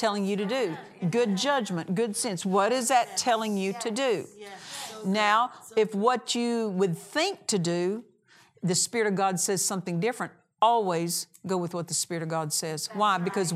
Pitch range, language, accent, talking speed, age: 180-225 Hz, English, American, 180 wpm, 50-69